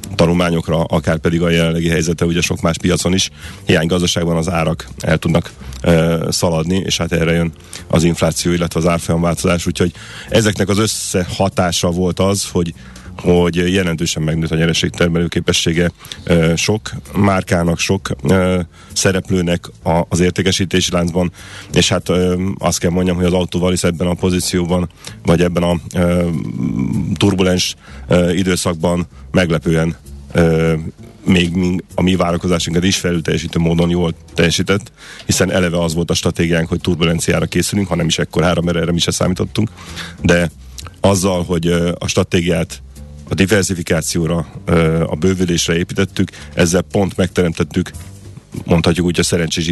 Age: 30-49